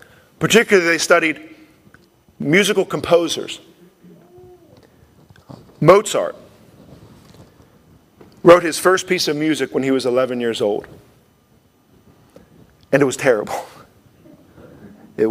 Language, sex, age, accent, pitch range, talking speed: English, male, 40-59, American, 130-175 Hz, 90 wpm